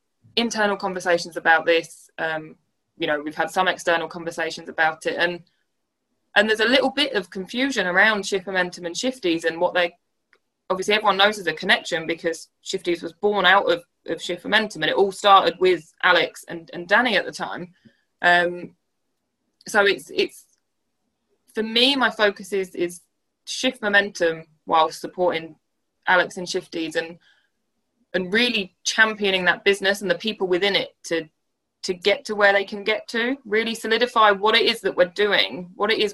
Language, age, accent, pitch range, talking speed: English, 20-39, British, 175-215 Hz, 175 wpm